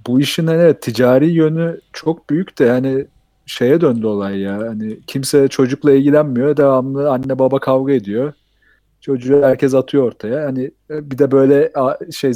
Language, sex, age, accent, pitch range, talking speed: Turkish, male, 40-59, native, 120-150 Hz, 155 wpm